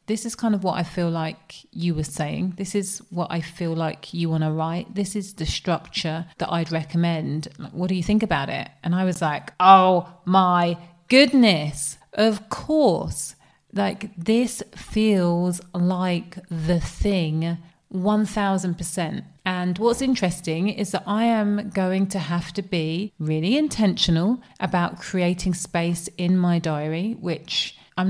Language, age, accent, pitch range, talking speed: English, 30-49, British, 165-195 Hz, 155 wpm